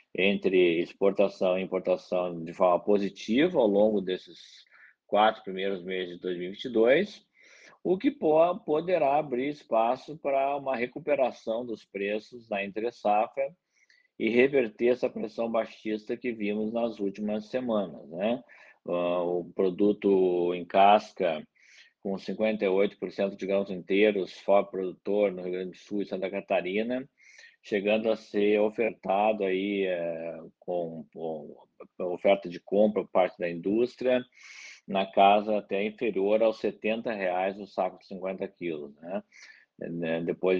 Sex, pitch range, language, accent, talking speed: male, 95-110 Hz, Portuguese, Brazilian, 125 wpm